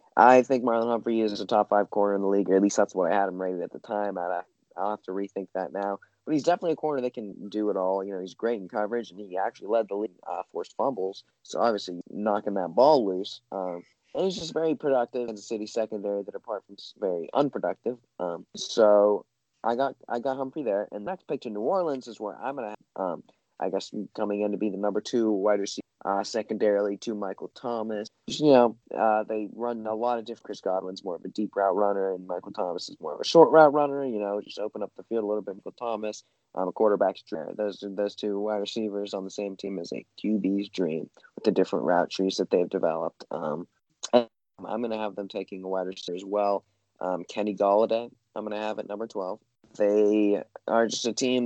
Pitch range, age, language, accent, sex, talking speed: 100-115 Hz, 20-39, English, American, male, 235 wpm